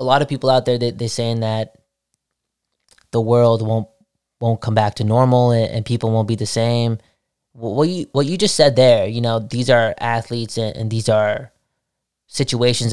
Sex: male